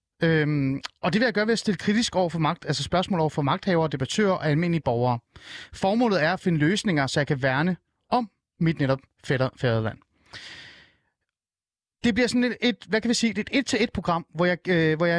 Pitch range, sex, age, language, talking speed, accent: 135-195 Hz, male, 30-49, Danish, 170 wpm, native